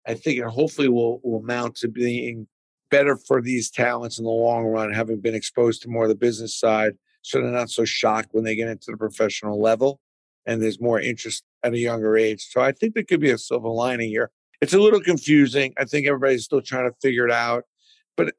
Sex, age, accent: male, 50-69, American